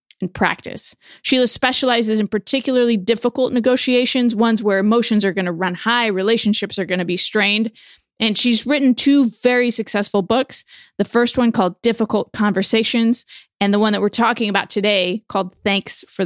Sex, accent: female, American